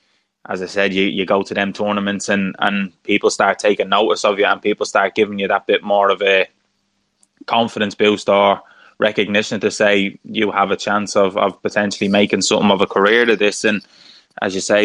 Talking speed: 205 wpm